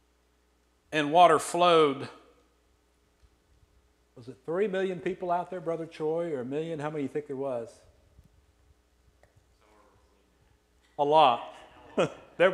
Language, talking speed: English, 115 wpm